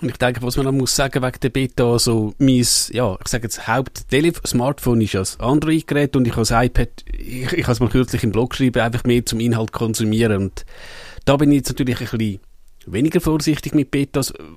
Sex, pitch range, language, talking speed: male, 115-140 Hz, German, 215 wpm